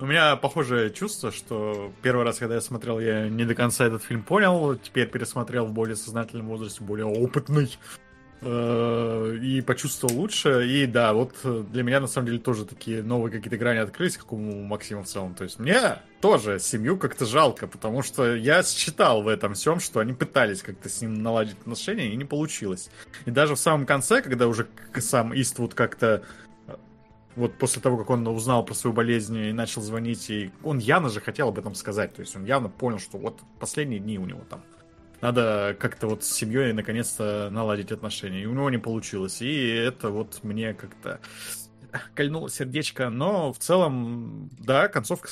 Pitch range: 110-130 Hz